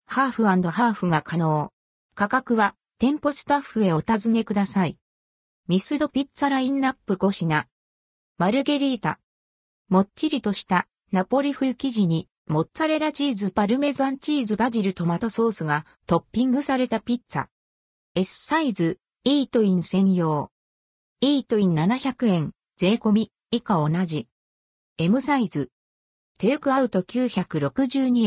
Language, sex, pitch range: Japanese, female, 155-255 Hz